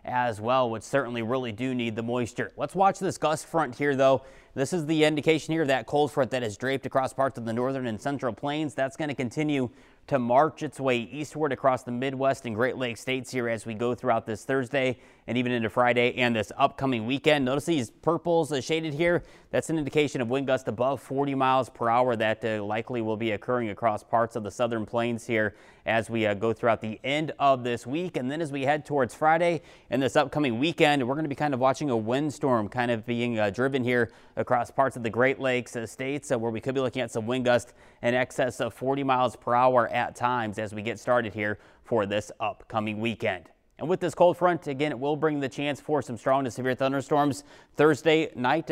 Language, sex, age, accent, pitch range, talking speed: English, male, 30-49, American, 120-145 Hz, 230 wpm